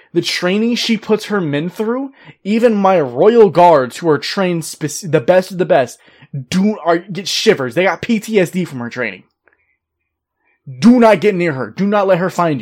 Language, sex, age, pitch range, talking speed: English, male, 20-39, 140-185 Hz, 180 wpm